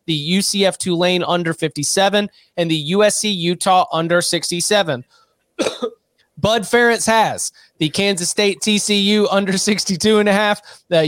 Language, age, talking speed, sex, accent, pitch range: English, 30-49, 130 wpm, male, American, 165-205 Hz